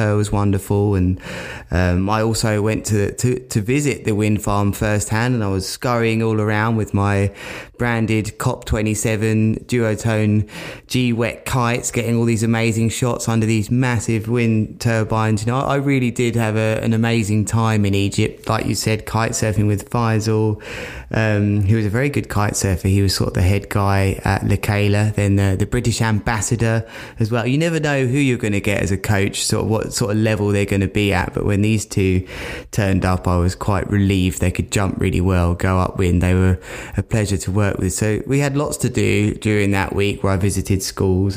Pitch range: 100-115 Hz